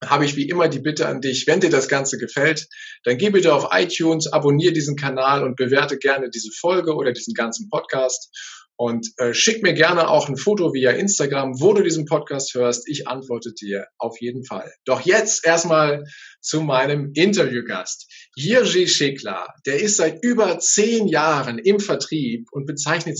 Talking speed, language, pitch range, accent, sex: 180 wpm, German, 135-185 Hz, German, male